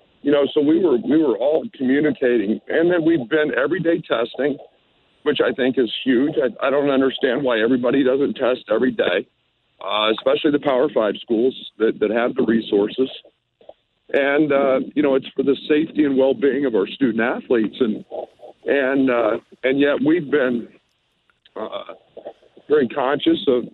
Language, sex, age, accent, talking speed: English, male, 50-69, American, 170 wpm